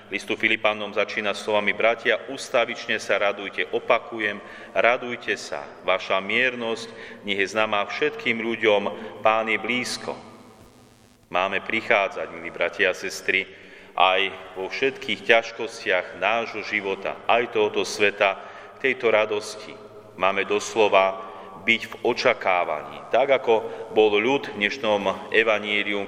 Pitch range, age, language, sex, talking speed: 95-115 Hz, 40-59, Slovak, male, 115 wpm